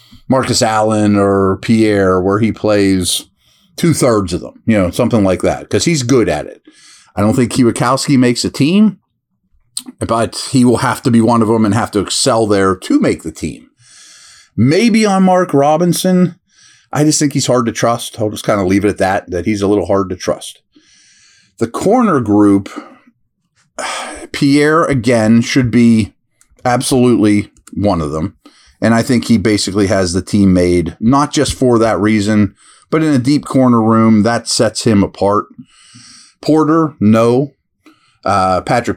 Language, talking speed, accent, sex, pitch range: English, 170 wpm, American, male, 105-150 Hz